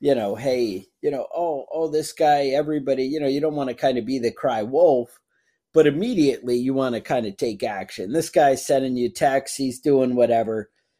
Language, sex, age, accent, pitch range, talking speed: English, male, 30-49, American, 125-155 Hz, 215 wpm